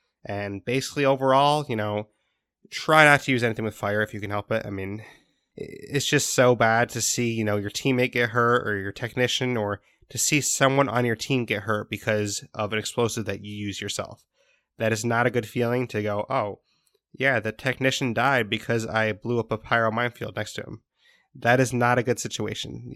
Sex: male